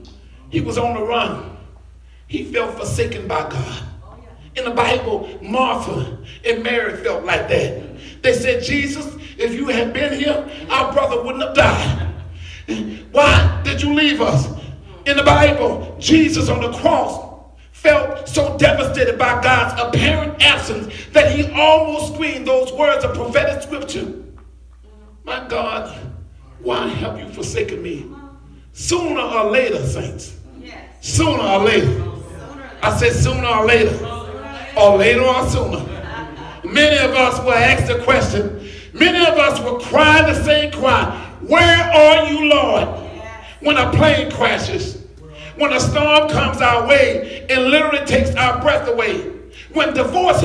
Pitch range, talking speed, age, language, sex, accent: 230-305 Hz, 145 wpm, 50-69, English, male, American